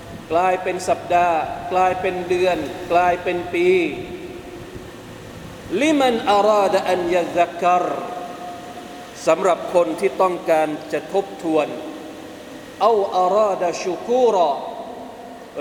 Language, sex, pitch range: Thai, male, 175-225 Hz